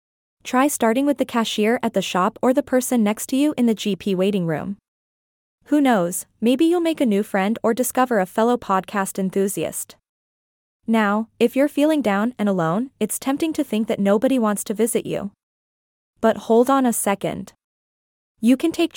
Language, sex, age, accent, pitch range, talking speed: English, female, 20-39, American, 200-255 Hz, 185 wpm